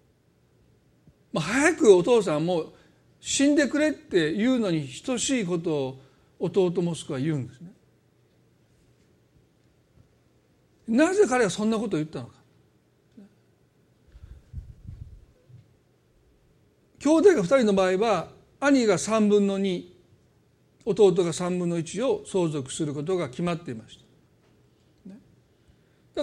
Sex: male